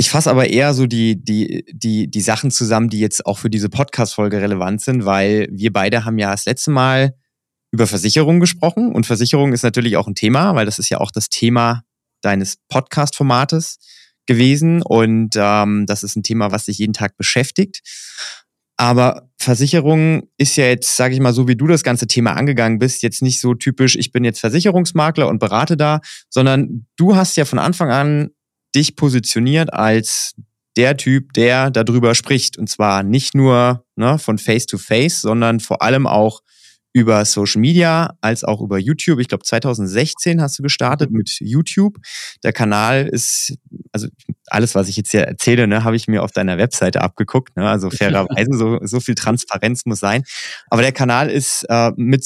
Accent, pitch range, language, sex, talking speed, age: German, 110-135 Hz, German, male, 185 wpm, 20-39